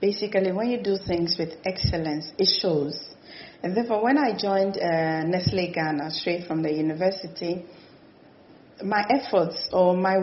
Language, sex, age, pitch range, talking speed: English, female, 40-59, 170-200 Hz, 145 wpm